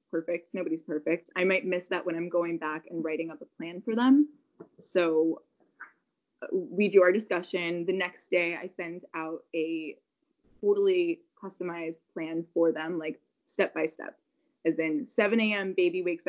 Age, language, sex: 20-39, English, female